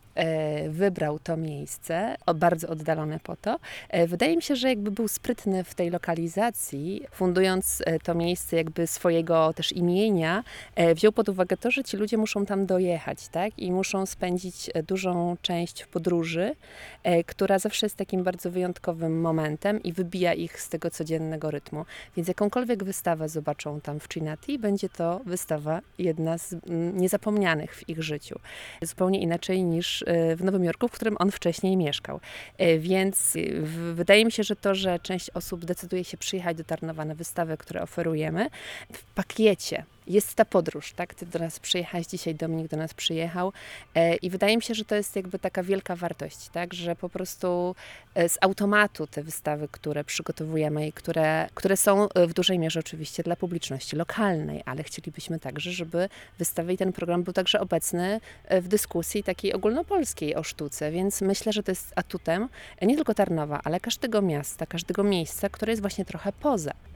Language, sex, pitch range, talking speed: Polish, female, 165-195 Hz, 165 wpm